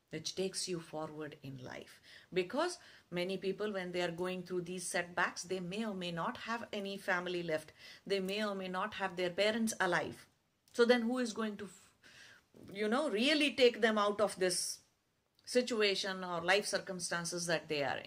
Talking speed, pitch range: 185 wpm, 165-225 Hz